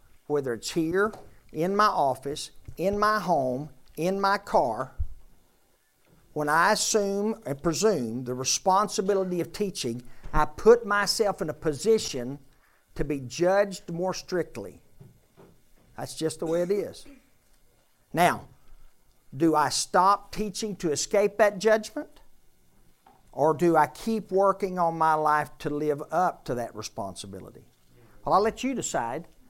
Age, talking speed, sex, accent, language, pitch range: 50-69, 135 wpm, male, American, English, 125-185 Hz